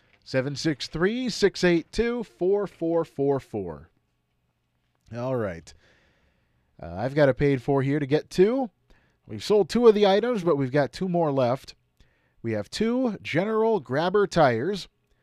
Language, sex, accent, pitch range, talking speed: English, male, American, 130-185 Hz, 120 wpm